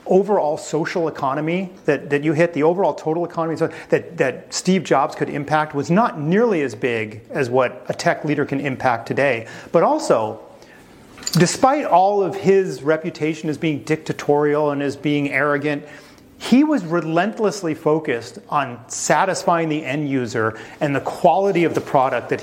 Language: English